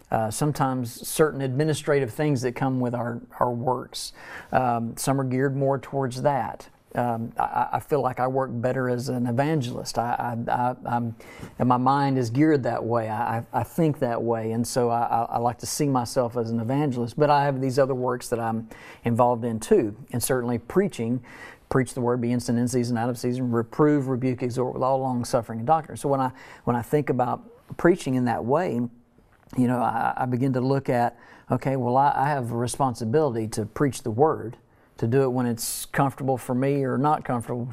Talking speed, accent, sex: 210 wpm, American, male